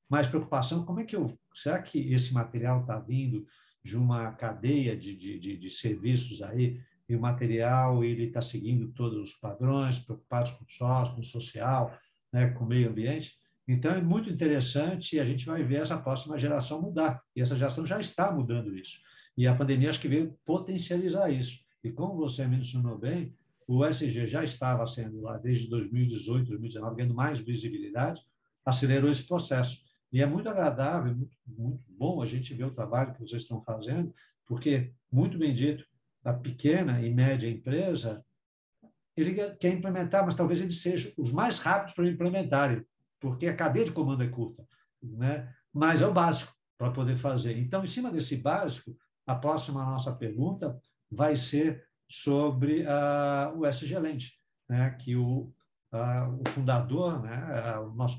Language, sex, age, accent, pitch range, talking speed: Portuguese, male, 60-79, Brazilian, 120-150 Hz, 170 wpm